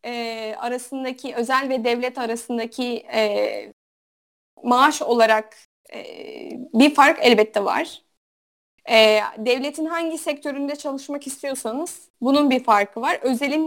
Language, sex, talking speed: Turkish, female, 105 wpm